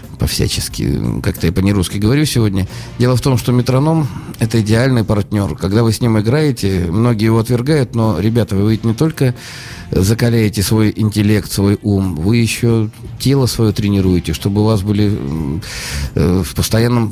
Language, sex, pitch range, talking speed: Russian, male, 100-120 Hz, 160 wpm